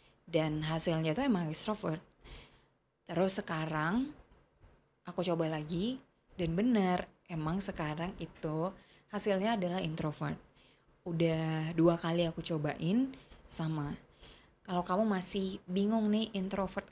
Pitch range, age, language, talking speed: 160-190 Hz, 20-39, Indonesian, 105 wpm